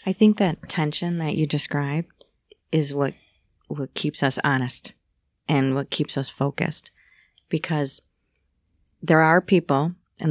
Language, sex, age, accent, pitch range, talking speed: English, female, 30-49, American, 150-180 Hz, 135 wpm